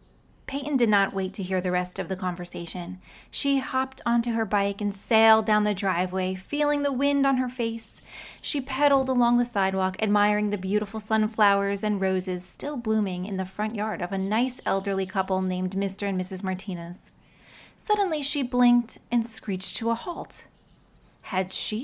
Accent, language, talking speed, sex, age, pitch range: American, English, 175 wpm, female, 30-49, 185-240 Hz